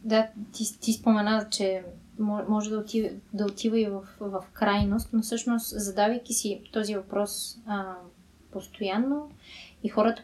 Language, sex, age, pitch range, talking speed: Bulgarian, female, 20-39, 195-220 Hz, 145 wpm